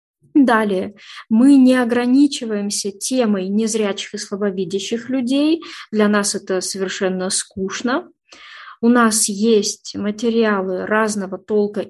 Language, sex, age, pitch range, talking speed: Russian, female, 20-39, 200-240 Hz, 100 wpm